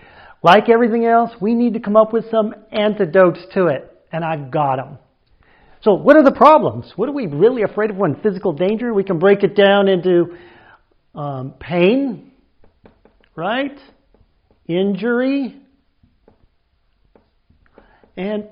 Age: 50-69